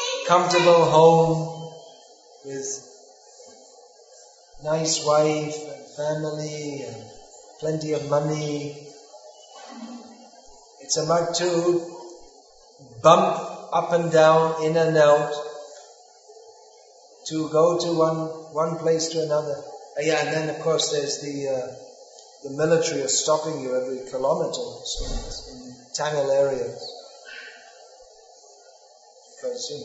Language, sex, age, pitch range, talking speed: English, male, 30-49, 155-205 Hz, 105 wpm